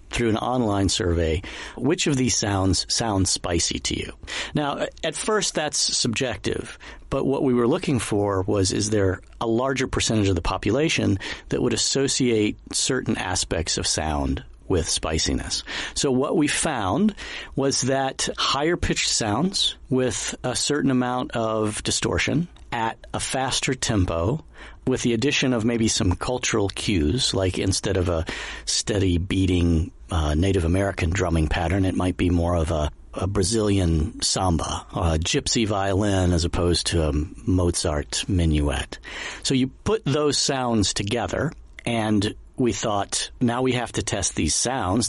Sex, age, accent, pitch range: male, 50-69, American, 90-125 Hz